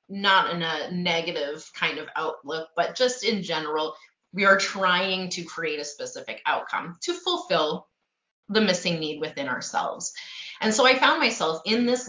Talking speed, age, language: 165 wpm, 30-49, English